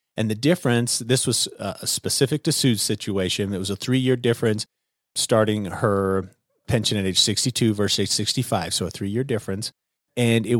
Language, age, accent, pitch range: English, 30-49, American, 95-120 Hz